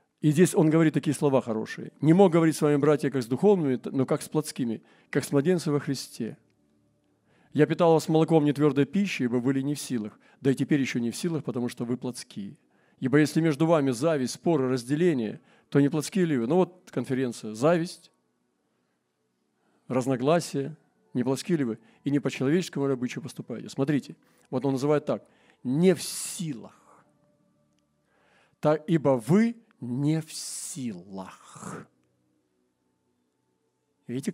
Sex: male